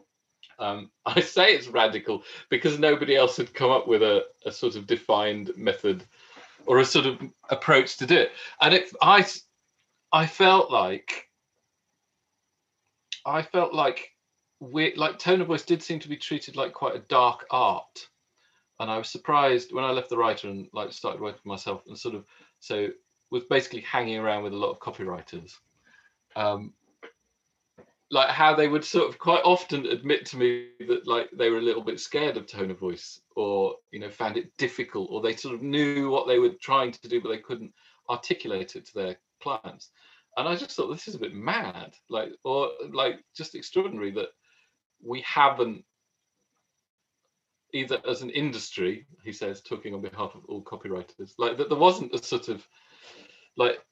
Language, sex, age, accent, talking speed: English, male, 40-59, British, 180 wpm